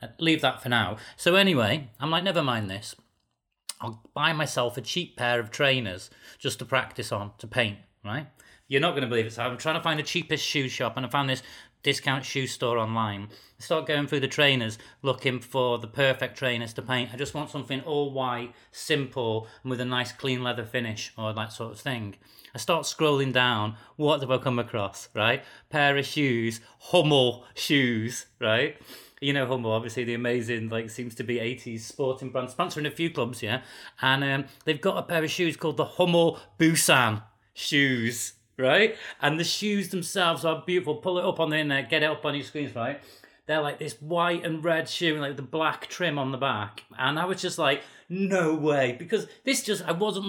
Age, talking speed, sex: 30-49, 210 wpm, male